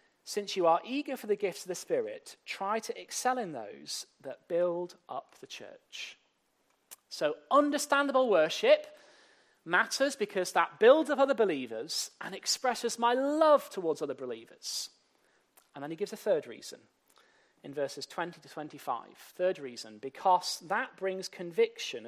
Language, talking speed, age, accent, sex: English, 150 wpm, 40-59, British, male